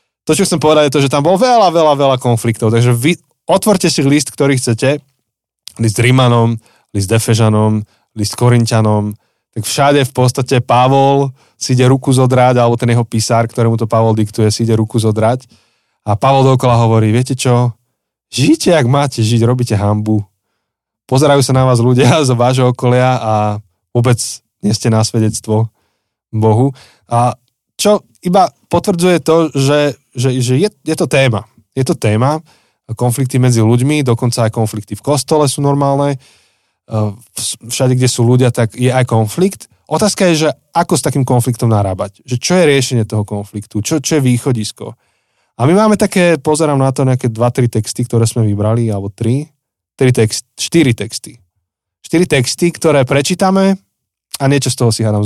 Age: 20-39